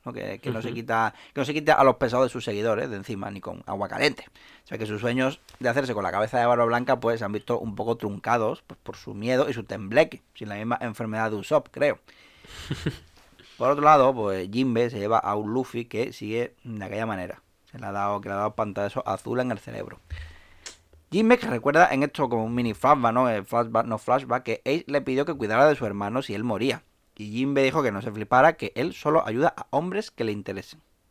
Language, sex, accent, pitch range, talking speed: Spanish, male, Spanish, 105-130 Hz, 235 wpm